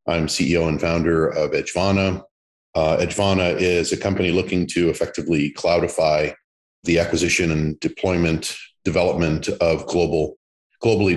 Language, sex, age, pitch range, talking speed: English, male, 40-59, 85-95 Hz, 125 wpm